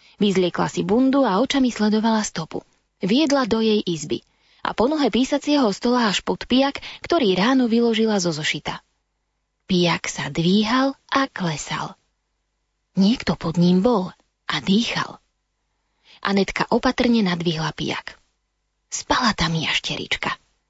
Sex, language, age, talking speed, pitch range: female, Slovak, 20-39, 120 wpm, 175-245 Hz